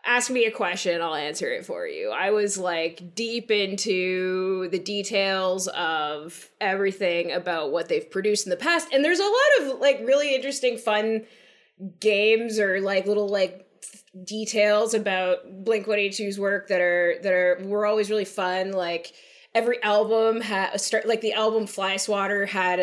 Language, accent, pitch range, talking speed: English, American, 180-225 Hz, 165 wpm